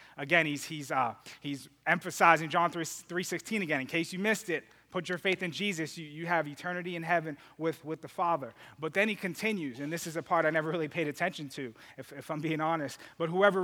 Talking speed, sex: 225 wpm, male